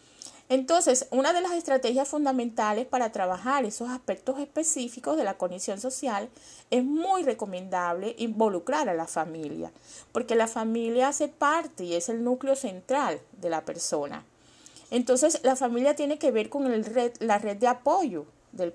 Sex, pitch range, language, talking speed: female, 185-260 Hz, Spanish, 155 wpm